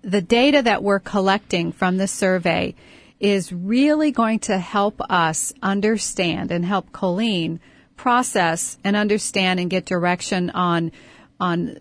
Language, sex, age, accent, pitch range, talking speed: English, female, 40-59, American, 180-215 Hz, 130 wpm